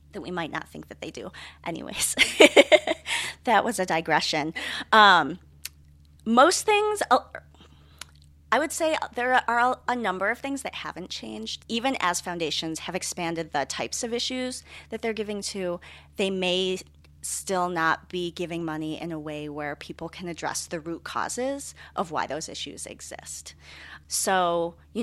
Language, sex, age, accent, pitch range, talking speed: English, female, 40-59, American, 150-190 Hz, 155 wpm